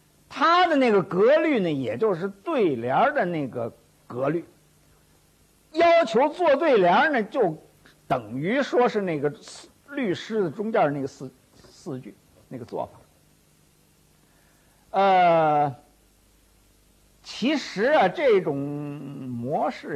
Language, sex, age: Chinese, male, 50-69